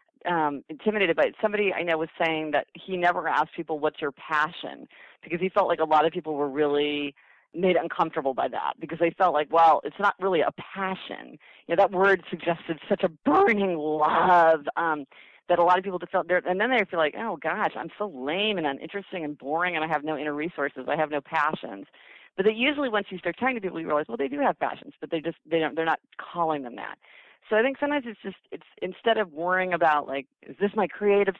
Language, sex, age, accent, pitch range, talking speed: English, female, 40-59, American, 155-195 Hz, 235 wpm